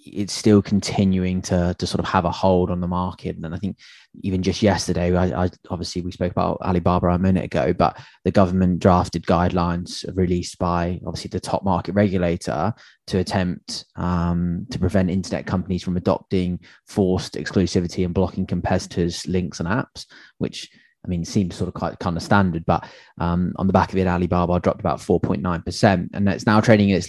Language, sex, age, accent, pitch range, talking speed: English, male, 20-39, British, 90-100 Hz, 190 wpm